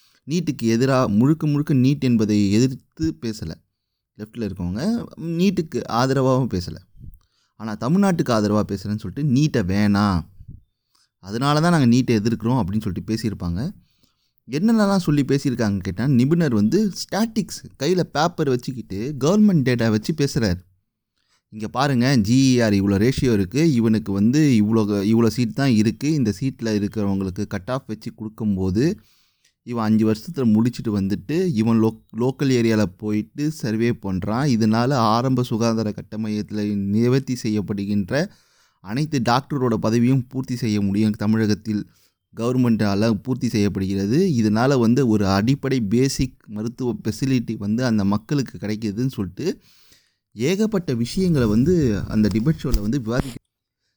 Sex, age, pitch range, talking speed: male, 30-49, 105-135 Hz, 120 wpm